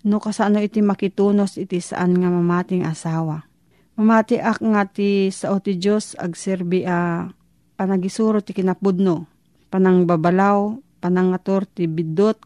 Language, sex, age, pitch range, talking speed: Filipino, female, 40-59, 175-210 Hz, 120 wpm